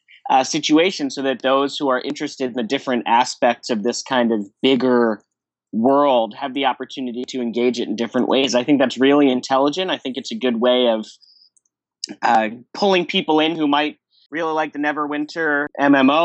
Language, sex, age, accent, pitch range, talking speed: English, male, 30-49, American, 125-145 Hz, 185 wpm